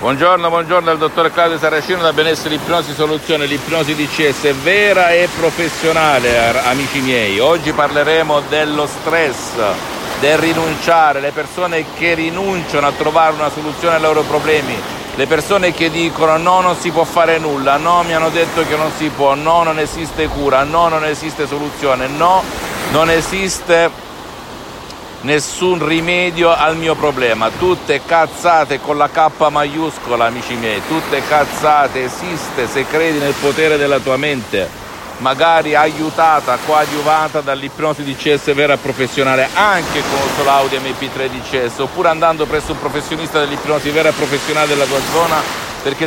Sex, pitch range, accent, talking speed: male, 145-165 Hz, native, 145 wpm